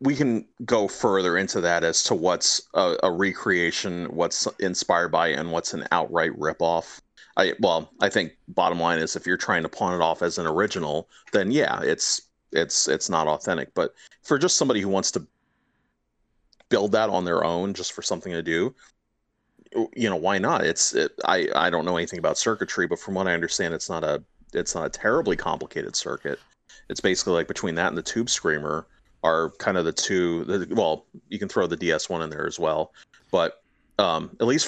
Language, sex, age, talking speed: English, male, 30-49, 205 wpm